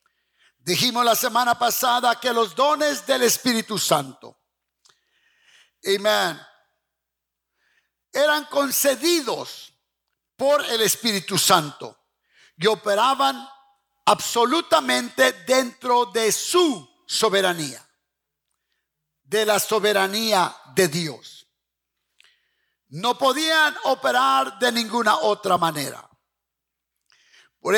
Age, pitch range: 50-69, 205-265 Hz